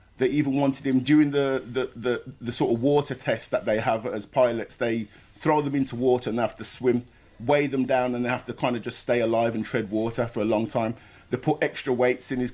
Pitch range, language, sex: 120-145 Hz, English, male